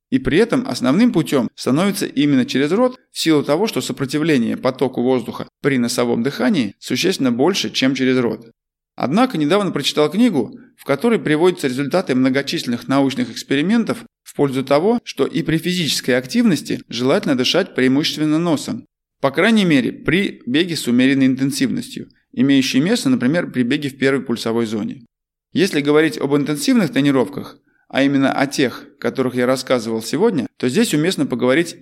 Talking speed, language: 155 wpm, Russian